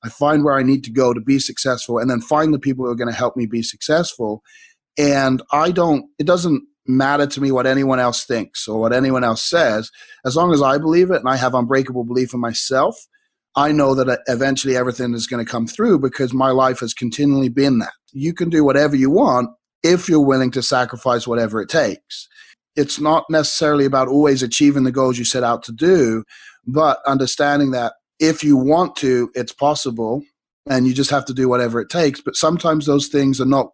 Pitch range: 125-145 Hz